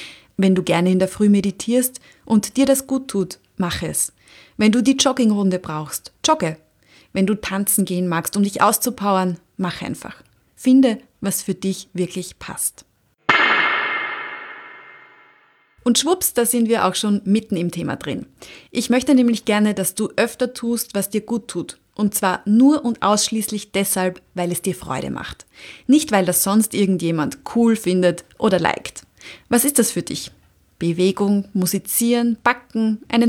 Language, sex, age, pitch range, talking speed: German, female, 30-49, 185-235 Hz, 160 wpm